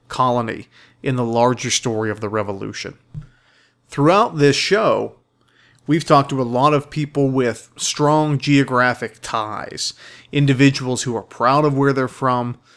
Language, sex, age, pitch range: English, male, 40-59, 120-140 Hz